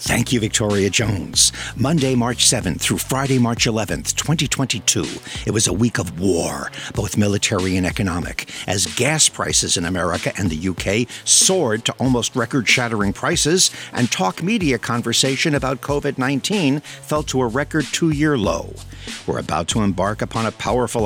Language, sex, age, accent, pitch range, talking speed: English, male, 60-79, American, 105-145 Hz, 160 wpm